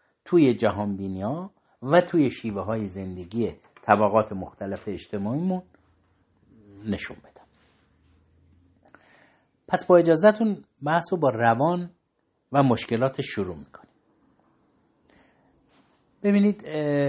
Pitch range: 105-155 Hz